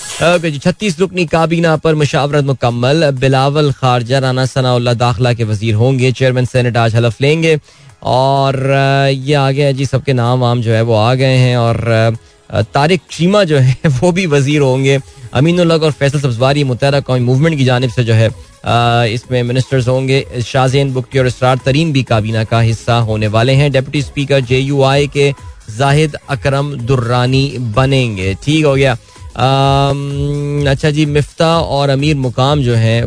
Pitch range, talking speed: 120-145 Hz, 165 wpm